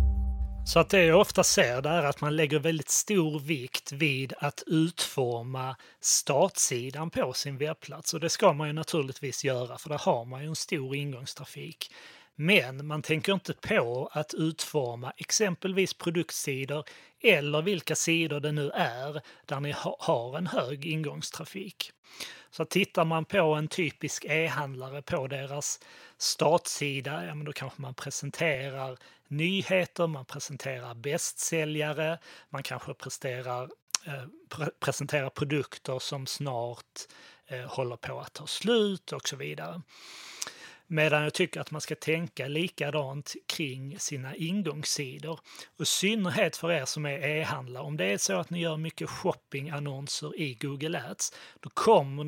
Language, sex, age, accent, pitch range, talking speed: Swedish, male, 30-49, native, 140-165 Hz, 140 wpm